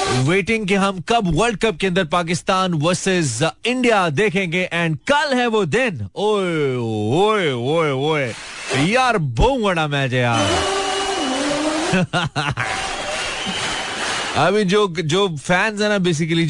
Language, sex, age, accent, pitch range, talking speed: Hindi, male, 30-49, native, 145-195 Hz, 115 wpm